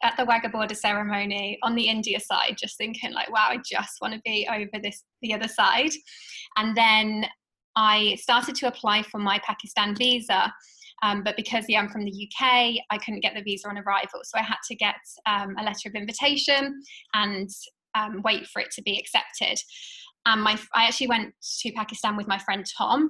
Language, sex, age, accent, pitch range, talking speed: English, female, 20-39, British, 205-240 Hz, 200 wpm